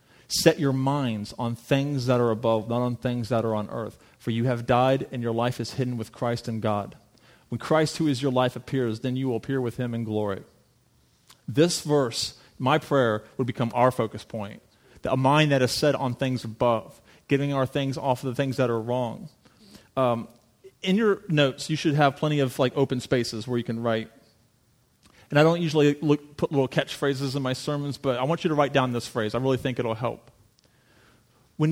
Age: 40-59